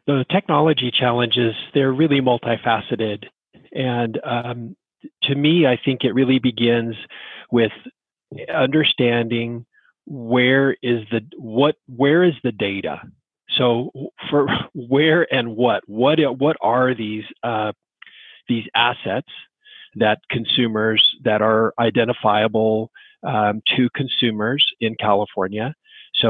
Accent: American